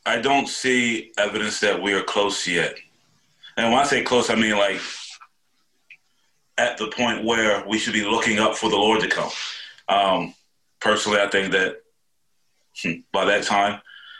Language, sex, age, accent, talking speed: English, male, 30-49, American, 170 wpm